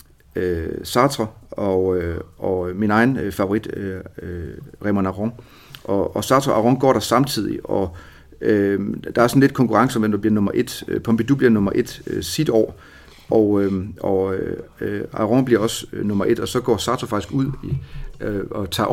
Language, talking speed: Danish, 195 wpm